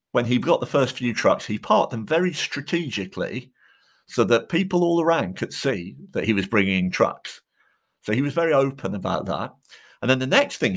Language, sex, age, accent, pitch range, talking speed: English, male, 50-69, British, 110-180 Hz, 200 wpm